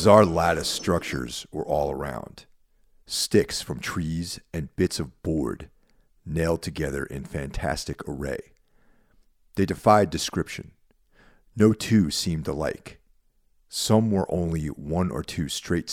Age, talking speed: 40-59, 120 wpm